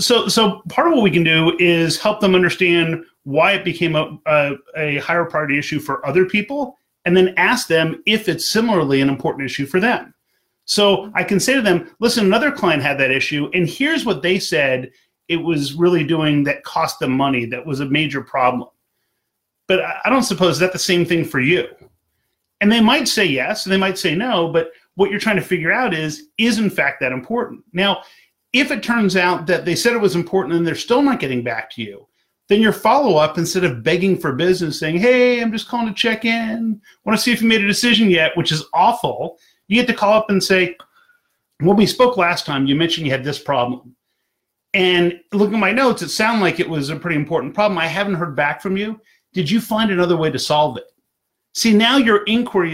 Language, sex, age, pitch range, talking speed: English, male, 30-49, 155-215 Hz, 225 wpm